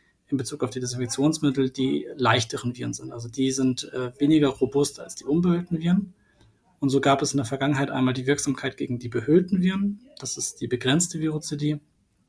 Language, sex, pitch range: German, male, 125-150 Hz